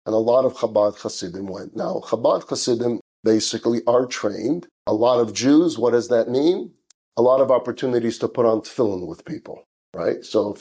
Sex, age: male, 50-69